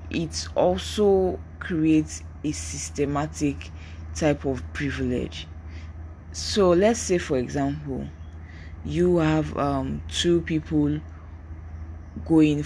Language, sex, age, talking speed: English, female, 20-39, 90 wpm